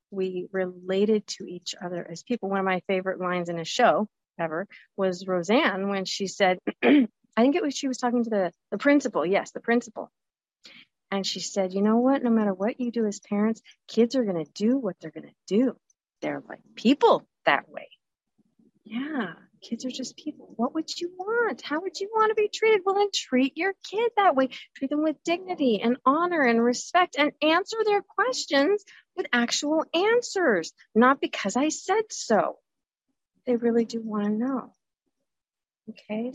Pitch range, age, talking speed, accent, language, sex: 190-270 Hz, 40-59, 180 wpm, American, English, female